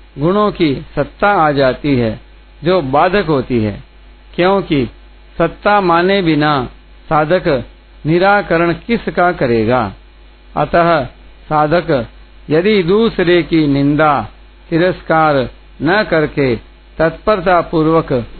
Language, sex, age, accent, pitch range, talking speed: Hindi, male, 50-69, native, 135-185 Hz, 95 wpm